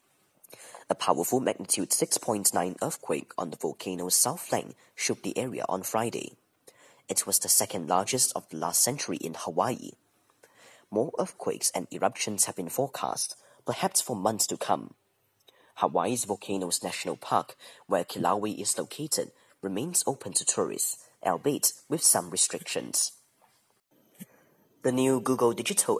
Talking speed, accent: 135 wpm, British